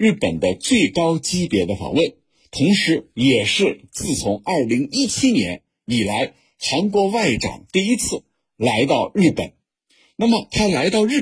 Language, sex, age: Chinese, male, 50-69